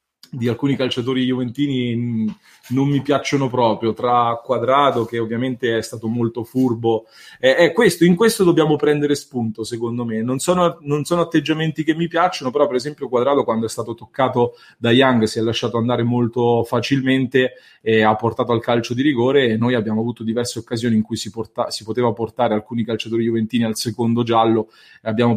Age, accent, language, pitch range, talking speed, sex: 30-49, Italian, English, 115-135 Hz, 180 wpm, male